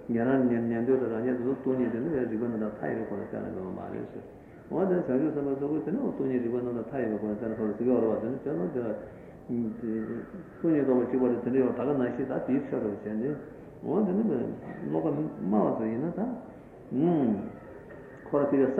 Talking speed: 115 wpm